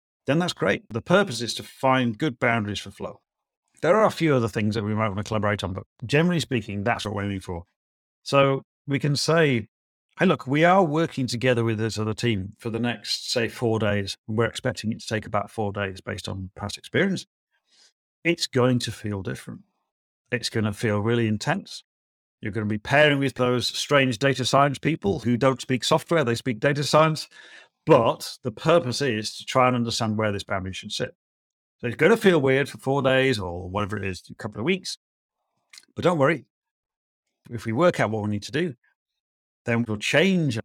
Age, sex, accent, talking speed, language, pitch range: 40-59, male, British, 205 wpm, English, 105-135 Hz